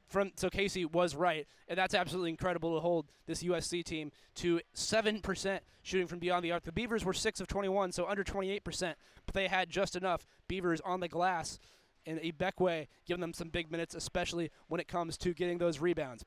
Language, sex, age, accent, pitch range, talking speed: English, male, 20-39, American, 160-190 Hz, 195 wpm